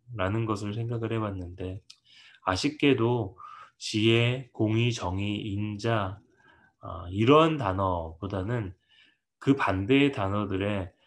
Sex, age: male, 20-39